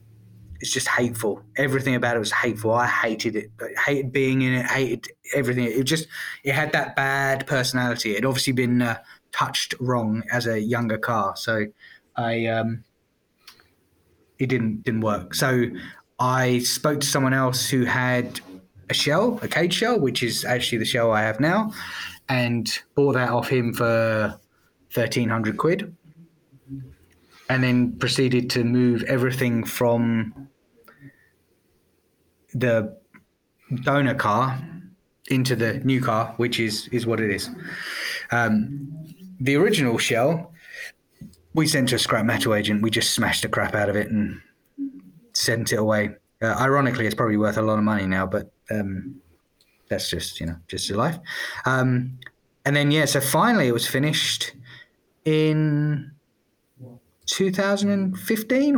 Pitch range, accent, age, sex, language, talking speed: 110-140 Hz, British, 20-39, male, English, 145 wpm